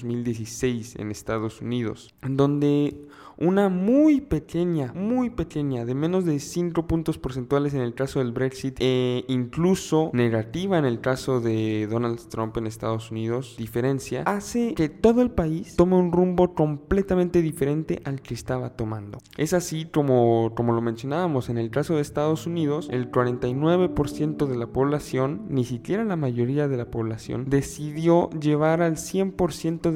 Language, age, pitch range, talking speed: Spanish, 20-39, 125-160 Hz, 150 wpm